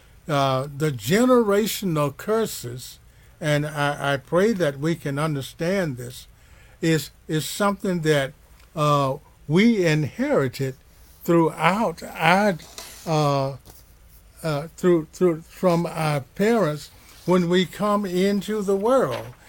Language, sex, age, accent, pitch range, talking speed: English, male, 60-79, American, 130-175 Hz, 100 wpm